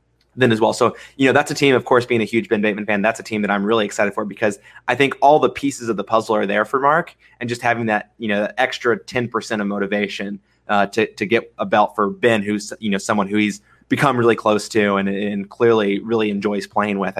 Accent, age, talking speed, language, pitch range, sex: American, 20-39, 260 wpm, English, 100-115 Hz, male